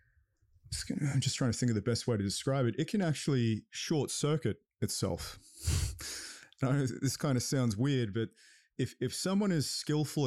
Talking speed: 170 wpm